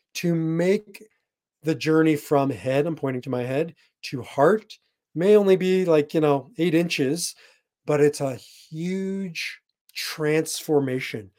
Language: English